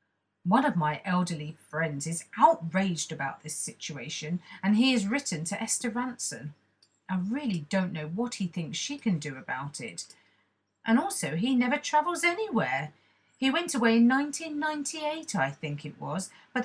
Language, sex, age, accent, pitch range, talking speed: English, female, 40-59, British, 165-235 Hz, 160 wpm